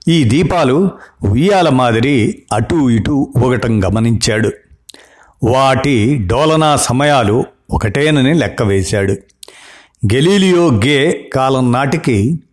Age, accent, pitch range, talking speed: 50-69, native, 110-145 Hz, 85 wpm